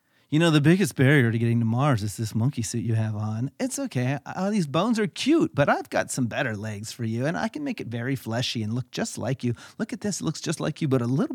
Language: English